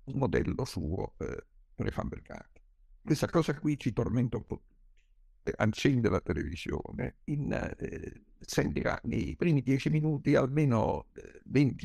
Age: 60-79